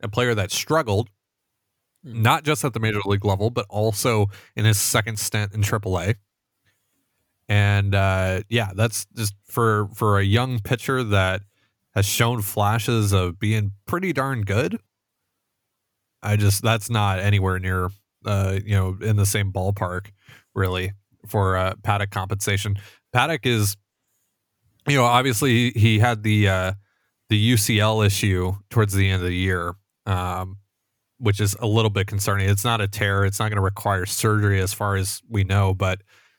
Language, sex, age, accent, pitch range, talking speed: English, male, 30-49, American, 100-115 Hz, 160 wpm